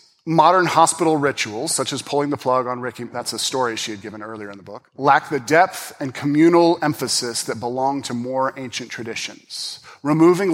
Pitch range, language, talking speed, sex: 120-160 Hz, English, 190 wpm, male